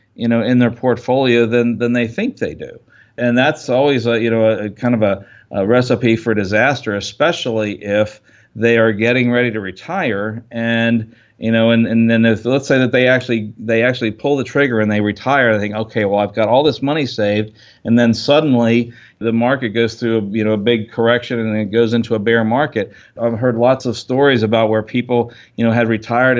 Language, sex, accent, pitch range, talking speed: English, male, American, 110-125 Hz, 220 wpm